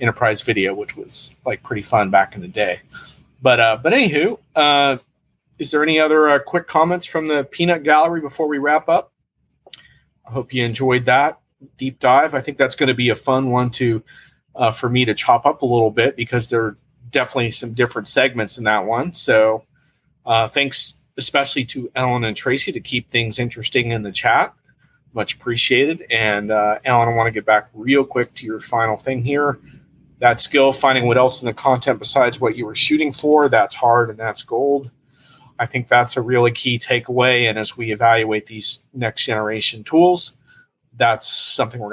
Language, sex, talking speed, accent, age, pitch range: English, male, 195 wpm, American, 40-59, 115-140 Hz